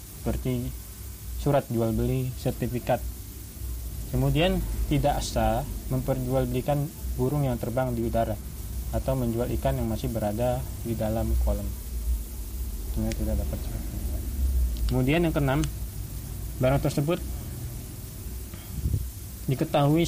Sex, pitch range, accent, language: male, 105-130 Hz, native, Indonesian